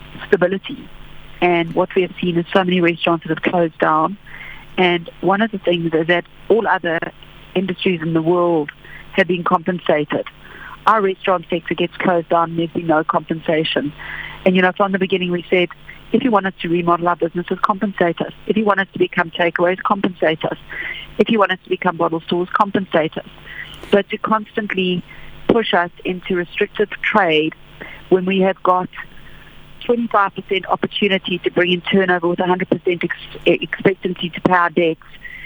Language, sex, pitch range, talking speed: English, female, 170-195 Hz, 170 wpm